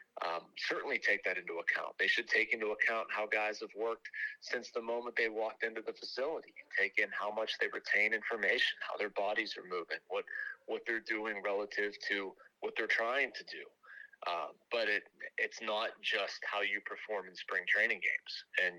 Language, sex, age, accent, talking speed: English, male, 30-49, American, 190 wpm